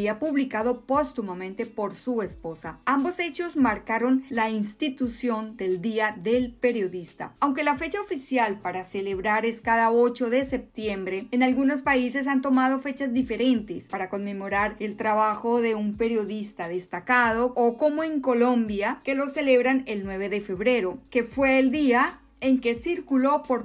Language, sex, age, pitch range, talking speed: Polish, female, 40-59, 200-260 Hz, 150 wpm